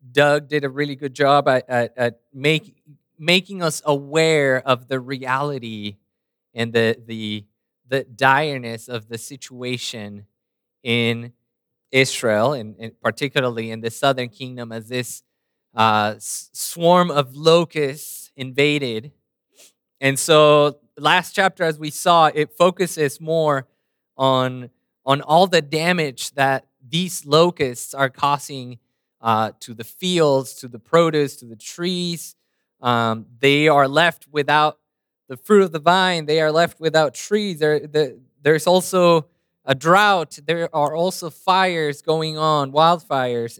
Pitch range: 125-165 Hz